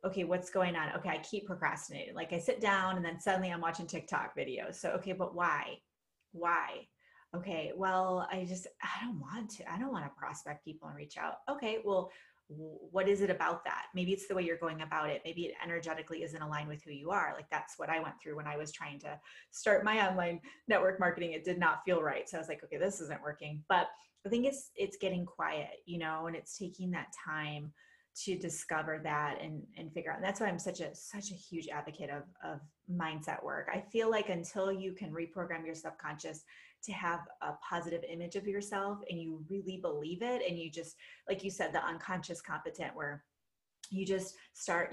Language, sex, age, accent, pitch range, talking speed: English, female, 20-39, American, 160-195 Hz, 220 wpm